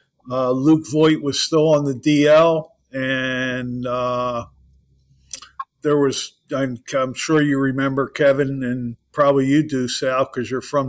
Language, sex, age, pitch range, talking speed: English, male, 50-69, 130-155 Hz, 140 wpm